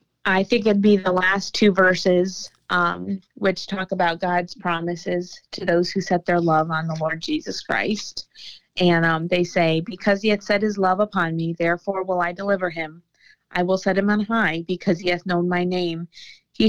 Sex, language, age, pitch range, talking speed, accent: female, English, 30-49, 115-180 Hz, 200 wpm, American